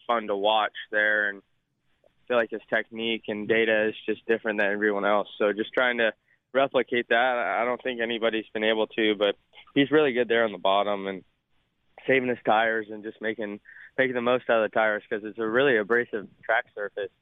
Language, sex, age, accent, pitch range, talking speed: English, male, 20-39, American, 105-125 Hz, 210 wpm